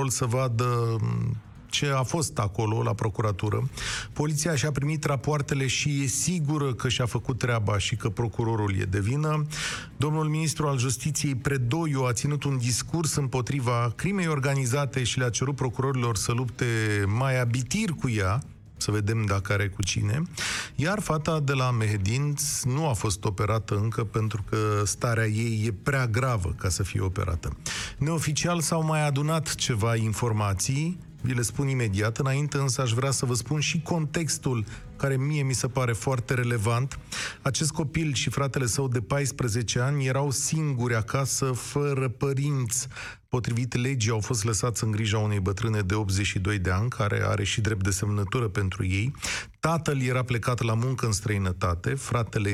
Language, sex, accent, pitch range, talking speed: Romanian, male, native, 110-140 Hz, 160 wpm